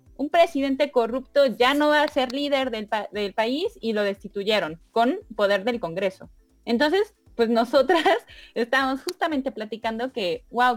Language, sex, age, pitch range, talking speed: English, female, 20-39, 210-275 Hz, 155 wpm